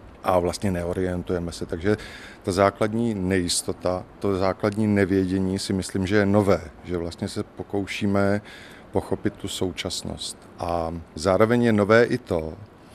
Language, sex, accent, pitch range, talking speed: Czech, male, native, 90-105 Hz, 135 wpm